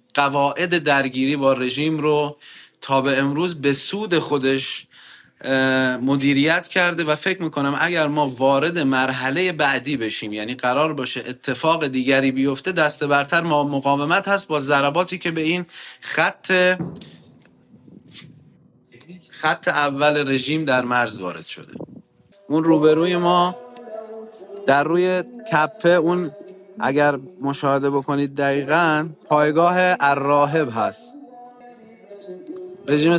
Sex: male